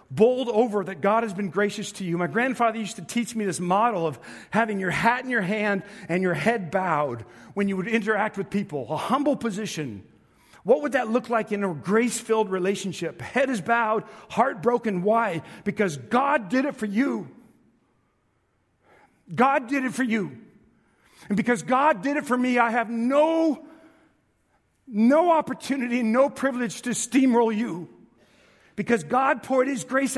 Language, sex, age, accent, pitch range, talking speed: English, male, 50-69, American, 195-255 Hz, 170 wpm